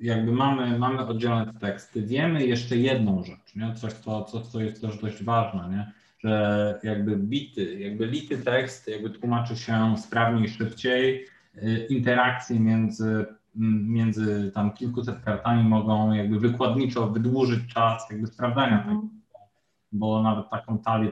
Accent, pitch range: native, 100-120 Hz